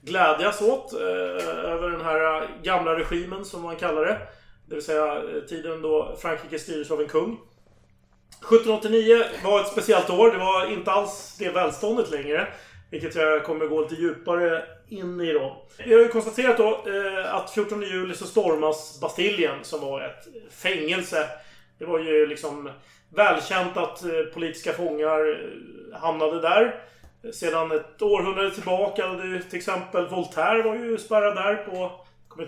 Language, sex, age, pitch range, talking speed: Swedish, male, 30-49, 160-220 Hz, 160 wpm